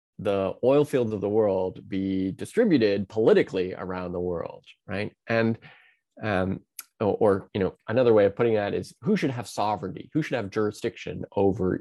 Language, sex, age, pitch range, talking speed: English, male, 20-39, 95-115 Hz, 170 wpm